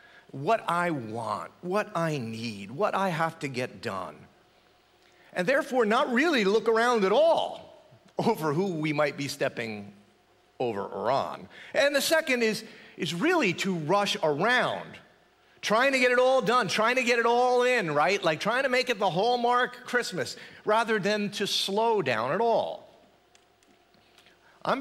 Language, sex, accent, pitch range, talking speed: English, male, American, 145-230 Hz, 160 wpm